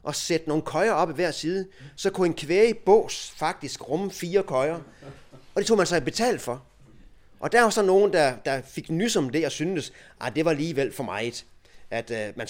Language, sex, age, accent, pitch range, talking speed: Danish, male, 30-49, native, 120-170 Hz, 205 wpm